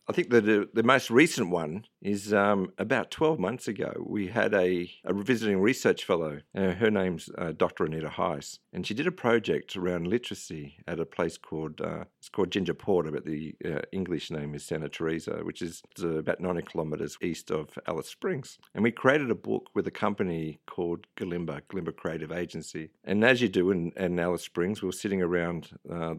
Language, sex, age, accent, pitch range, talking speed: English, male, 50-69, Australian, 80-100 Hz, 200 wpm